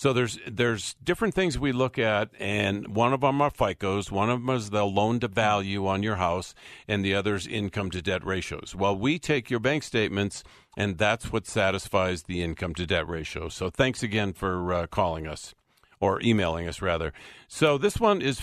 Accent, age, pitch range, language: American, 50-69, 95-125 Hz, English